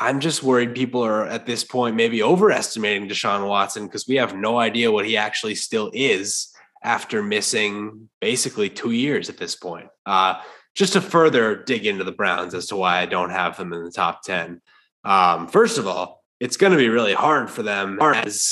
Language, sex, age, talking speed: English, male, 20-39, 200 wpm